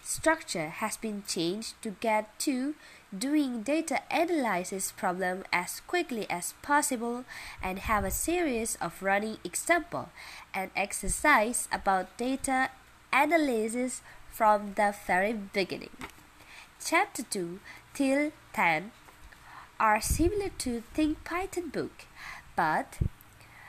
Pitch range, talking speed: 210-300 Hz, 105 wpm